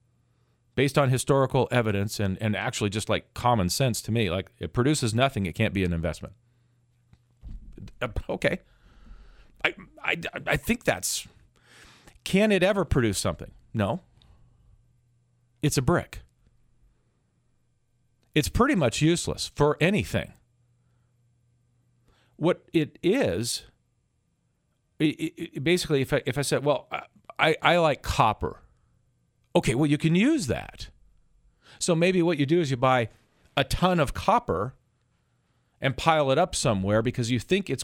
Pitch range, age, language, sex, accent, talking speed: 110-145 Hz, 40-59, English, male, American, 140 wpm